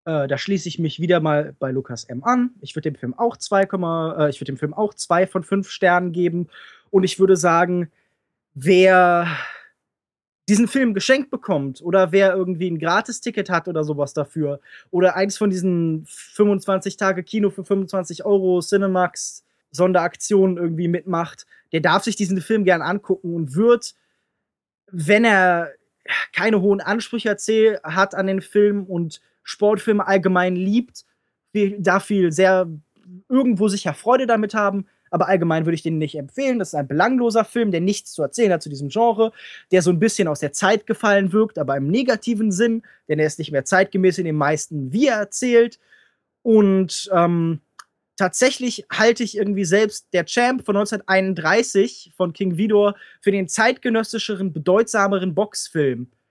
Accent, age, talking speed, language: German, 20-39, 165 wpm, German